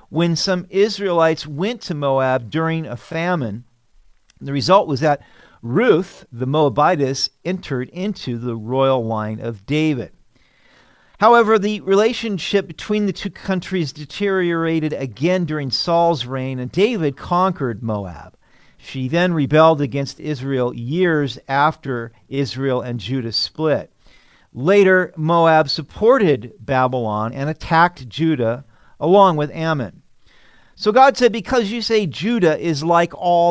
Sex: male